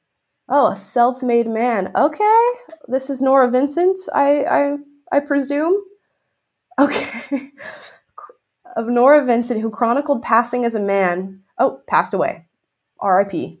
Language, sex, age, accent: English, female, 20-39, American